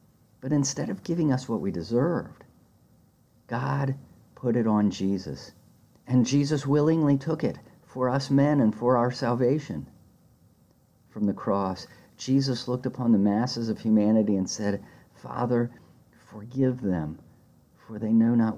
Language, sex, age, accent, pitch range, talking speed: English, male, 50-69, American, 105-135 Hz, 140 wpm